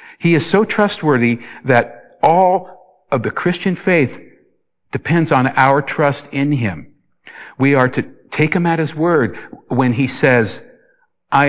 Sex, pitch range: male, 115-160 Hz